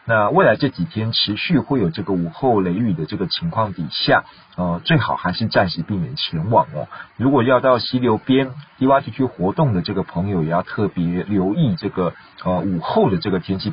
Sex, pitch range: male, 95-125 Hz